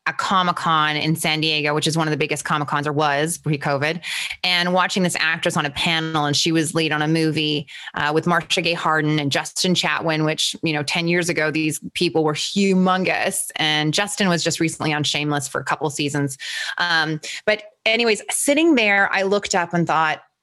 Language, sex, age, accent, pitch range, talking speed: English, female, 20-39, American, 150-175 Hz, 210 wpm